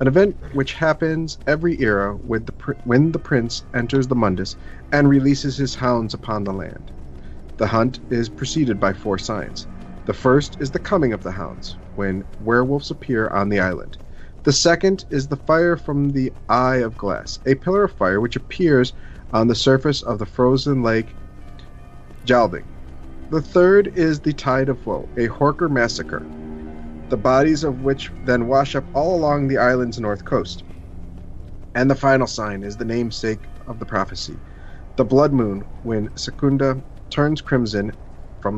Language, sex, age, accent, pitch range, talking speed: English, male, 40-59, American, 100-140 Hz, 165 wpm